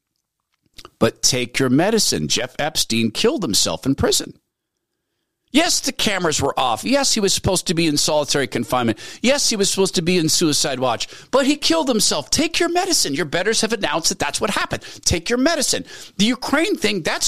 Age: 50-69